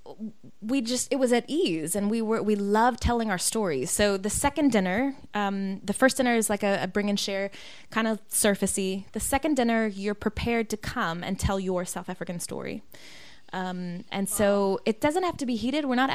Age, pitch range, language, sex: 20-39, 185-235 Hz, English, female